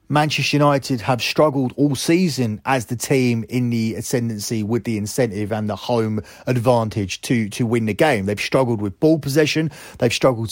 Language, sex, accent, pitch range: English, male, British, 115-145 Hz